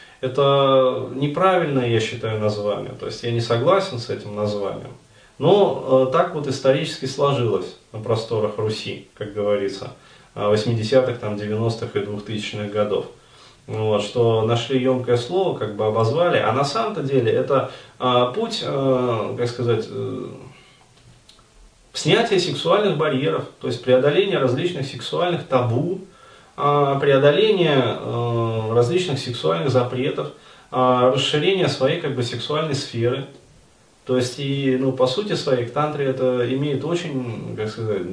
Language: Russian